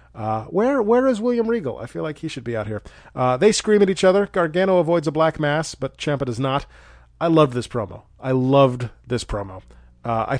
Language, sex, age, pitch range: English, male, 30-49, 125-180 Hz